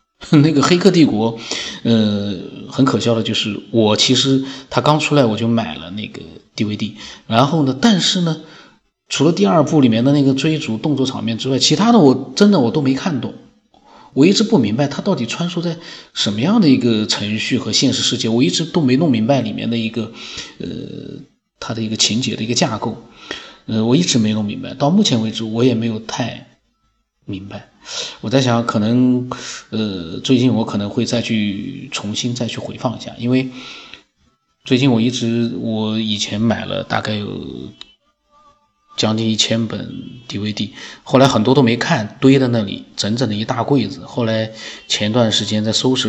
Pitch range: 110-135 Hz